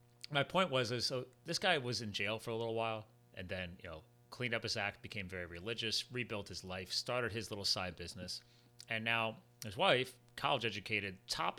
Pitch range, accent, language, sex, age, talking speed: 110-125 Hz, American, English, male, 30-49, 205 wpm